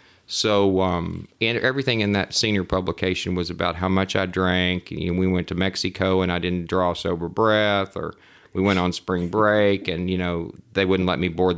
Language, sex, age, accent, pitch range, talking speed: English, male, 40-59, American, 90-105 Hz, 210 wpm